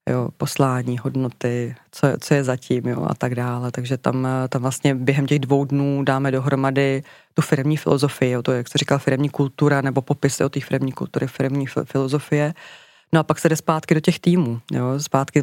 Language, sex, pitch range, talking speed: Czech, female, 140-160 Hz, 200 wpm